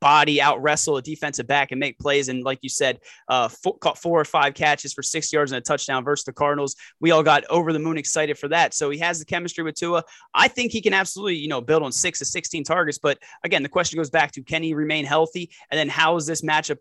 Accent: American